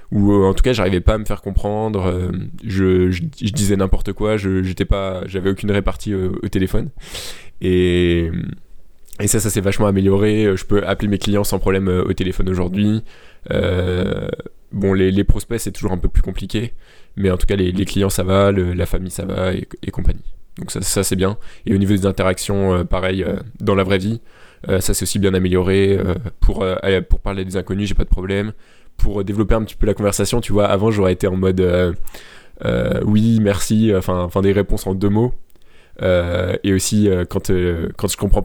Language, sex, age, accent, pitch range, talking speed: French, male, 20-39, French, 95-105 Hz, 210 wpm